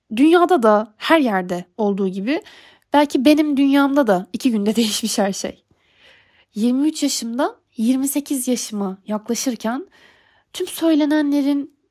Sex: female